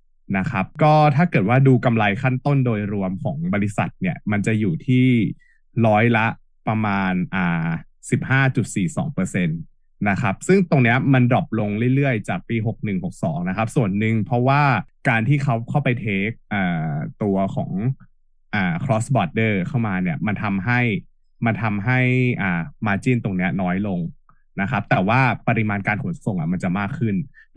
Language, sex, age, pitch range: Thai, male, 20-39, 105-140 Hz